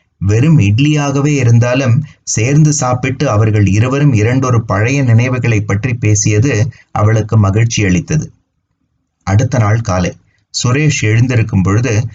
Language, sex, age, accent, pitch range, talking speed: Tamil, male, 30-49, native, 105-140 Hz, 105 wpm